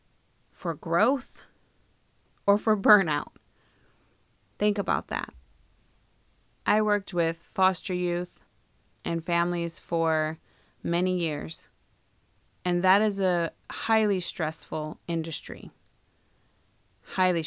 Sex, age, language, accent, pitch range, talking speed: female, 30-49, English, American, 125-195 Hz, 90 wpm